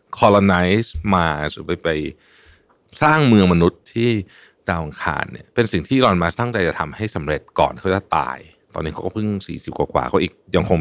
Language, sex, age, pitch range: Thai, male, 60-79, 85-115 Hz